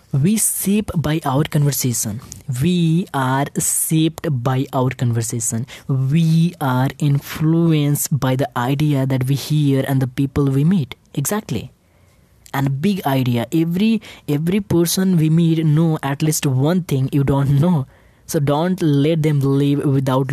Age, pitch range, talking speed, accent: 20-39, 130-165 Hz, 145 wpm, Indian